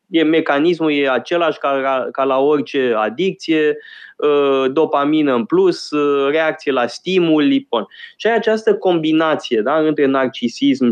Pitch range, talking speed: 135-220 Hz, 135 wpm